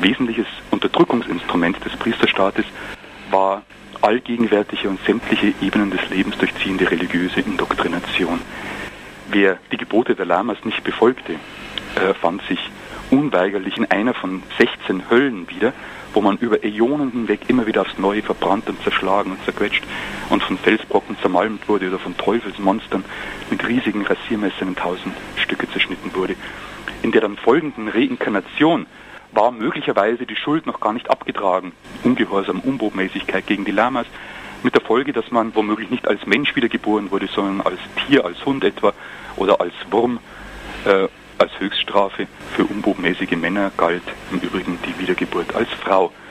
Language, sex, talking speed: German, male, 145 wpm